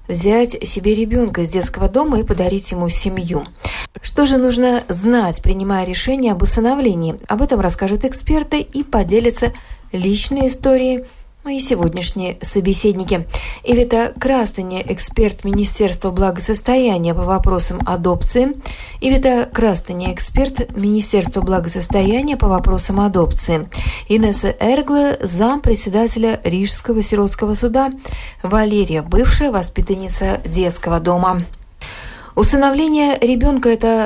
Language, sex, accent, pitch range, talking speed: Russian, female, native, 185-235 Hz, 105 wpm